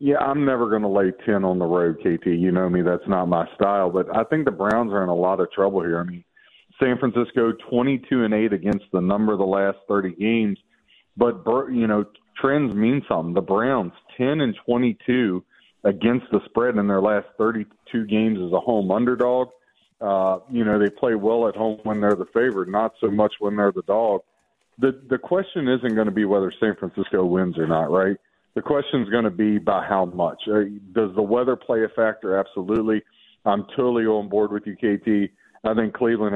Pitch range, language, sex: 100-115 Hz, English, male